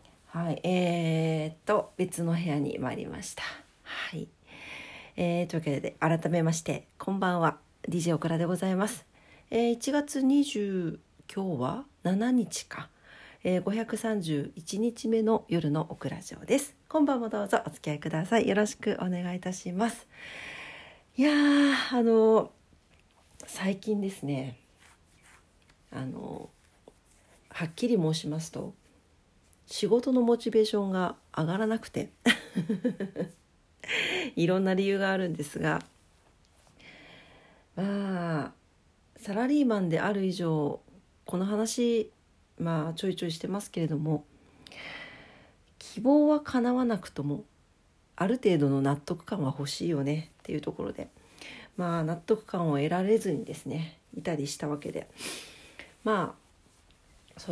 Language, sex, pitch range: Japanese, female, 150-215 Hz